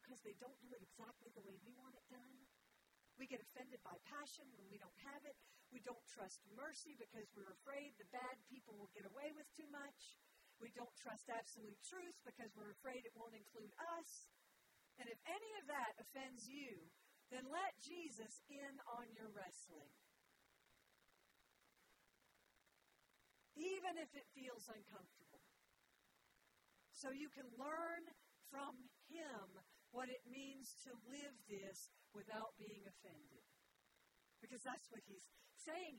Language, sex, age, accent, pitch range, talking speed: English, female, 50-69, American, 215-280 Hz, 145 wpm